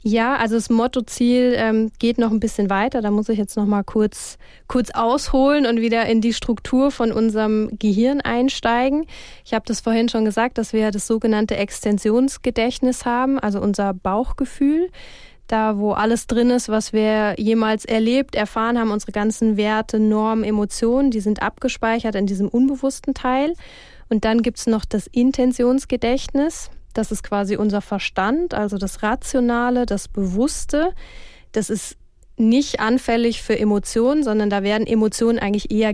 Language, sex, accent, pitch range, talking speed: German, female, German, 210-250 Hz, 160 wpm